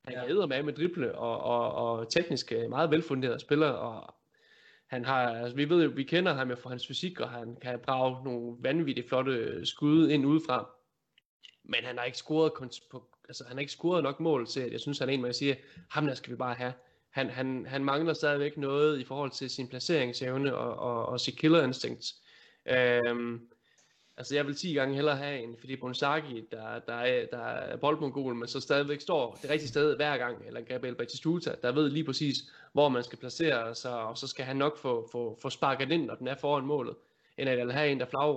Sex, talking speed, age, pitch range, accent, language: male, 225 wpm, 20-39, 125-150 Hz, native, Danish